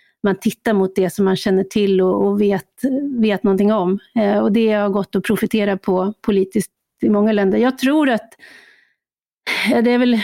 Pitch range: 195-230 Hz